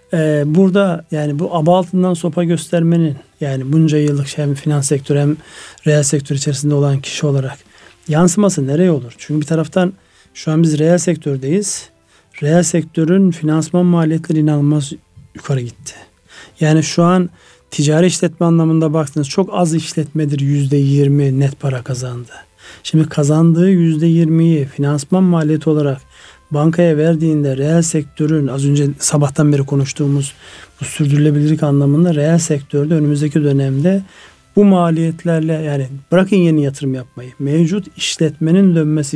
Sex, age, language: male, 40-59, Turkish